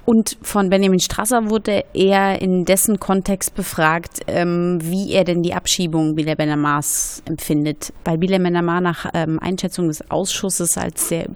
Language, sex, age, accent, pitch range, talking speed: German, female, 30-49, German, 170-210 Hz, 145 wpm